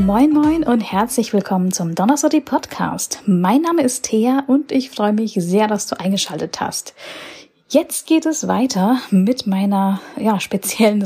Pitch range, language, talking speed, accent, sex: 200-255 Hz, German, 150 wpm, German, female